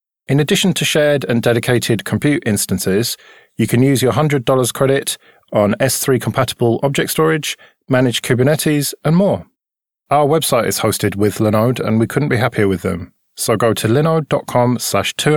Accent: British